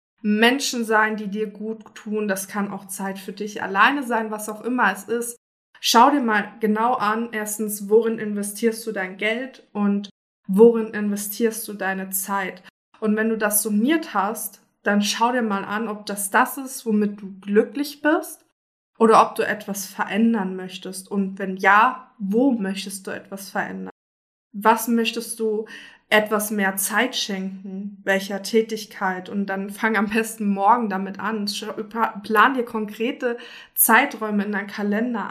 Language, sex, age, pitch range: German, female, 20-39, 200-230 Hz